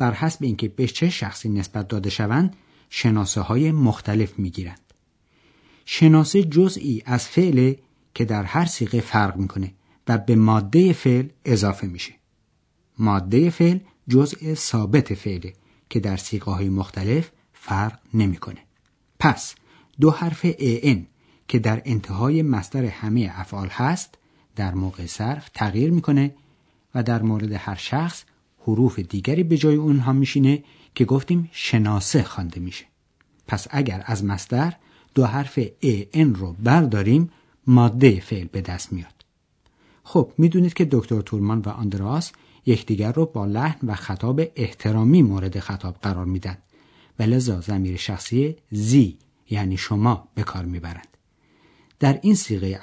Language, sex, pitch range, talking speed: Persian, male, 100-145 Hz, 135 wpm